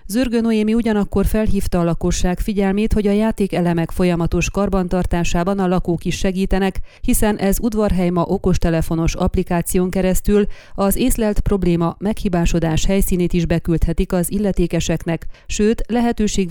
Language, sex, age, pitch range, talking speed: Hungarian, female, 30-49, 170-205 Hz, 125 wpm